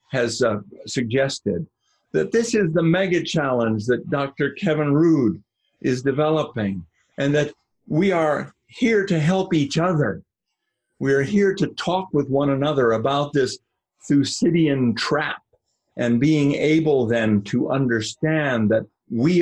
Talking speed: 135 wpm